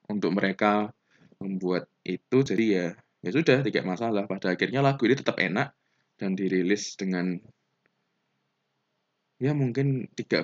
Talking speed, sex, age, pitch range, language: 125 wpm, male, 20-39, 95-125 Hz, Indonesian